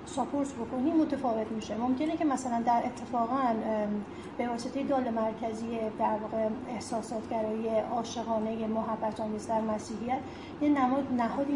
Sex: female